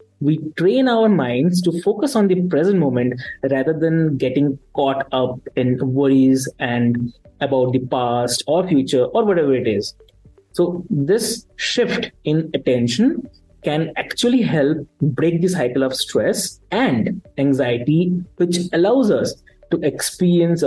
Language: English